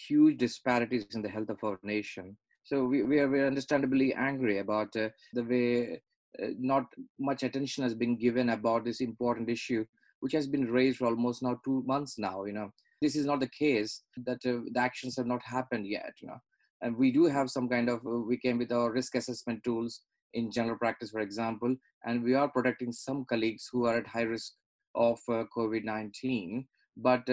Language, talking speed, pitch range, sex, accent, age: English, 205 wpm, 115-130 Hz, male, Indian, 20-39